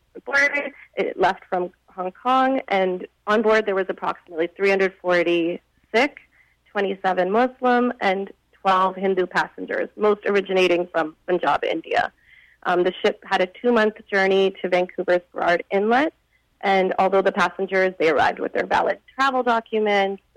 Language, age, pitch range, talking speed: English, 30-49, 185-220 Hz, 135 wpm